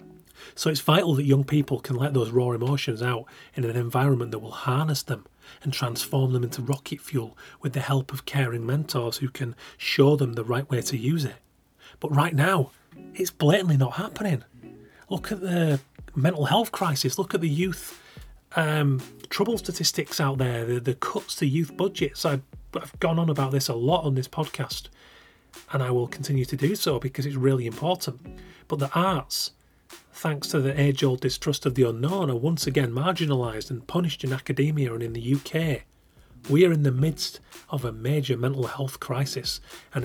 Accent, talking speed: British, 190 wpm